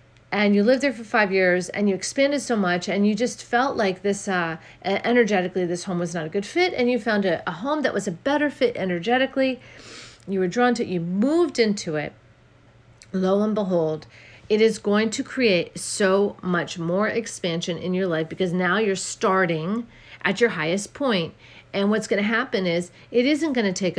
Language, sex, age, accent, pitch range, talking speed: English, female, 40-59, American, 175-230 Hz, 205 wpm